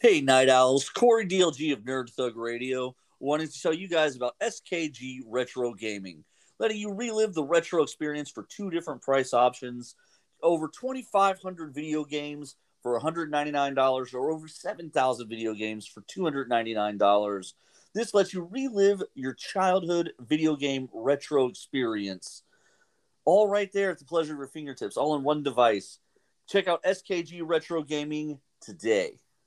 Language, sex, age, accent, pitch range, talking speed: English, male, 40-59, American, 120-170 Hz, 145 wpm